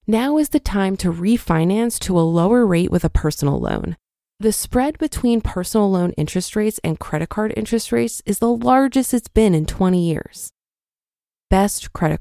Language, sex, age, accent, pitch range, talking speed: English, female, 20-39, American, 170-240 Hz, 175 wpm